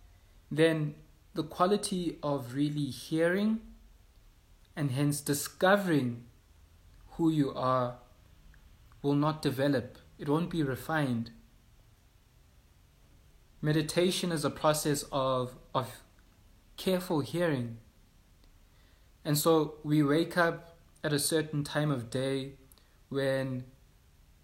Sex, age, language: male, 20-39, English